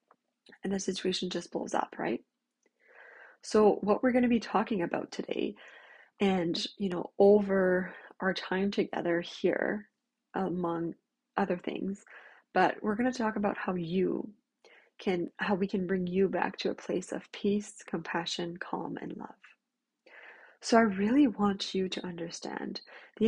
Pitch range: 185-230 Hz